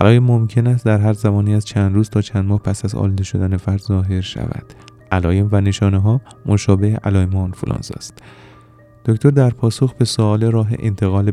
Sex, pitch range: male, 95-110 Hz